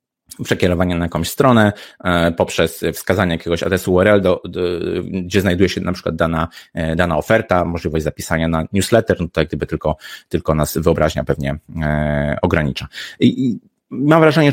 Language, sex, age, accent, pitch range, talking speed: Polish, male, 30-49, native, 85-110 Hz, 150 wpm